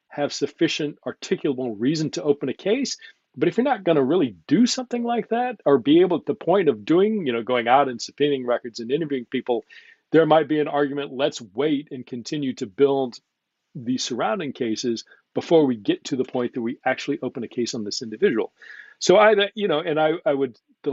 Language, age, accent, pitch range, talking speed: English, 40-59, American, 125-155 Hz, 215 wpm